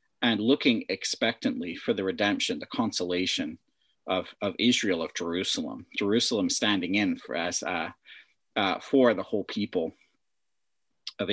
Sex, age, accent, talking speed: male, 40-59, American, 130 wpm